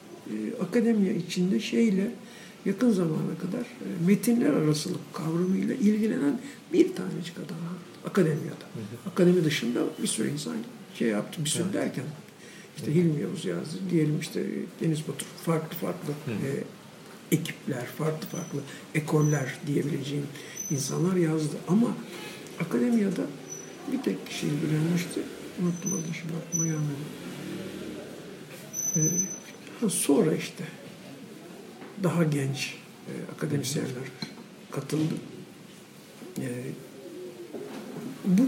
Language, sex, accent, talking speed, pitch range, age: Turkish, male, native, 95 wpm, 160-210 Hz, 60-79